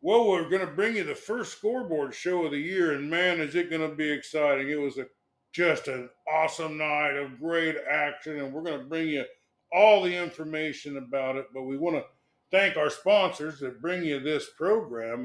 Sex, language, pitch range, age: male, English, 135-175 Hz, 50-69